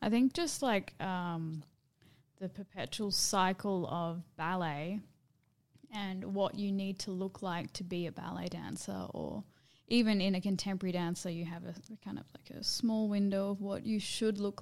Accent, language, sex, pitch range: Australian, English, female, 150-195 Hz